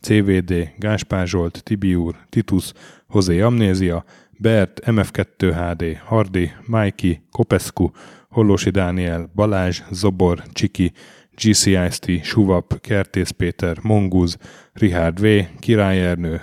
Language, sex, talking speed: Hungarian, male, 90 wpm